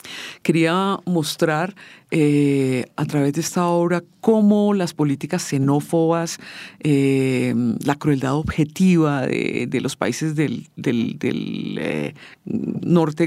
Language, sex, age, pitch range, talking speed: English, female, 50-69, 155-200 Hz, 110 wpm